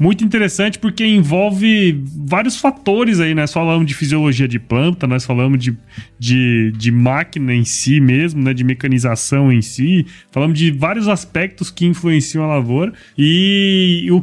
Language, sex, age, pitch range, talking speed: Portuguese, male, 20-39, 135-185 Hz, 160 wpm